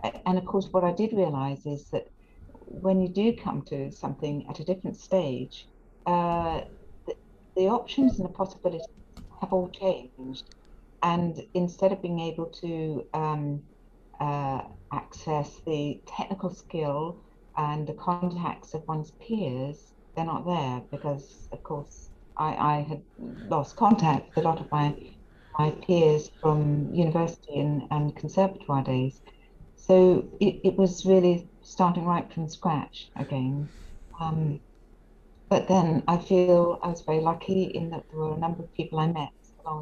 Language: English